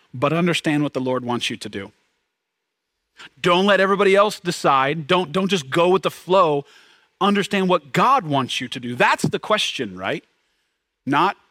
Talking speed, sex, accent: 170 wpm, male, American